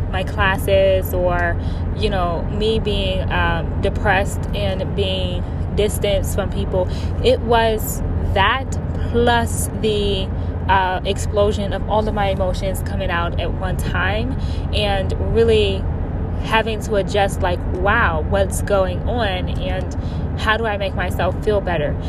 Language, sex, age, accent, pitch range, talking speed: English, female, 10-29, American, 85-100 Hz, 135 wpm